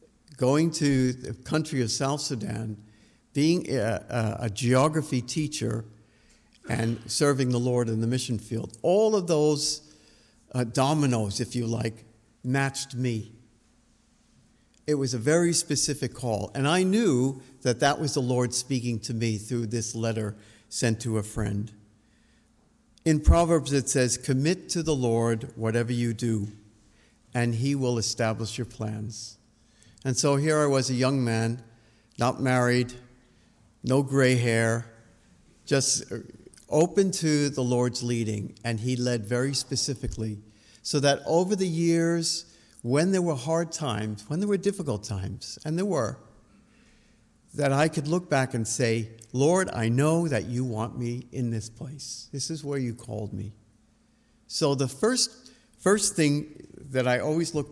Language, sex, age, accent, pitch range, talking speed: English, male, 60-79, American, 115-145 Hz, 150 wpm